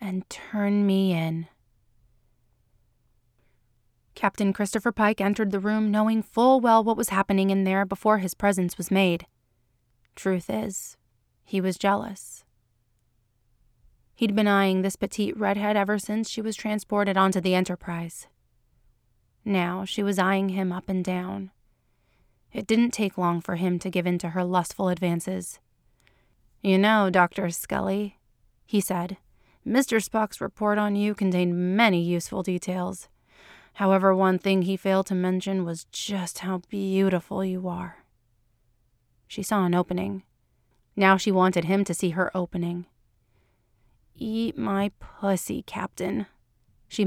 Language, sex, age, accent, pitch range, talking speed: English, female, 30-49, American, 170-200 Hz, 140 wpm